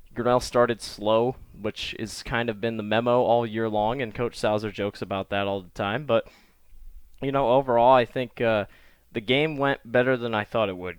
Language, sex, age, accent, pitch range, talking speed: English, male, 20-39, American, 100-125 Hz, 210 wpm